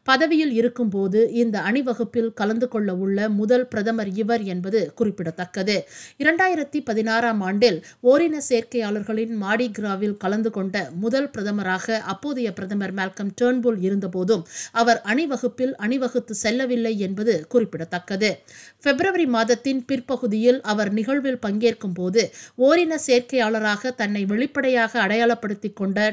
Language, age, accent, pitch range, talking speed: Tamil, 50-69, native, 180-245 Hz, 105 wpm